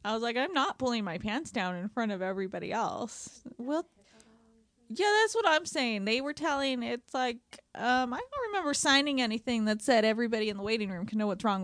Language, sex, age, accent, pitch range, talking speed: English, female, 20-39, American, 200-245 Hz, 215 wpm